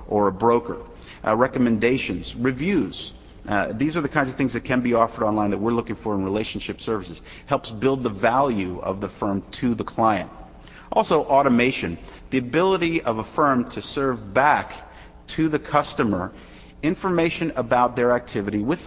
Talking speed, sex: 170 wpm, male